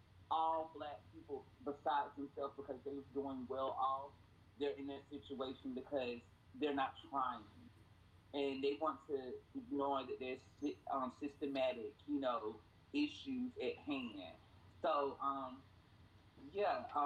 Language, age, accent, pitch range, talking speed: English, 30-49, American, 120-145 Hz, 125 wpm